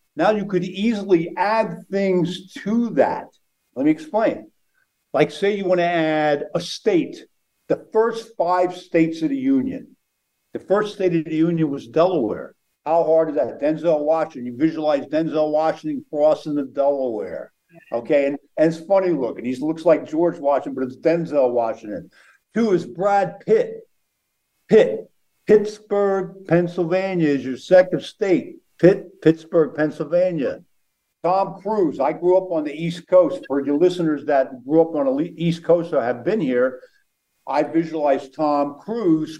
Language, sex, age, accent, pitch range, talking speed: English, male, 50-69, American, 150-195 Hz, 155 wpm